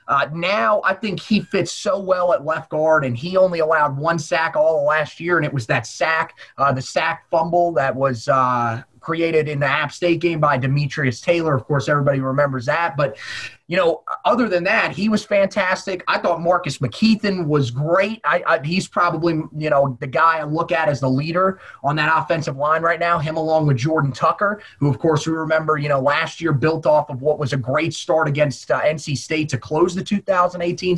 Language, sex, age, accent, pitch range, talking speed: English, male, 30-49, American, 145-180 Hz, 210 wpm